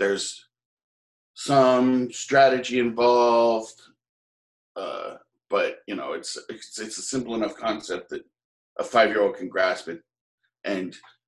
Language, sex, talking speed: English, male, 115 wpm